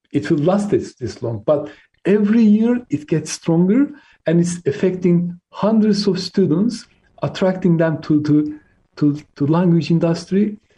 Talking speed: 145 wpm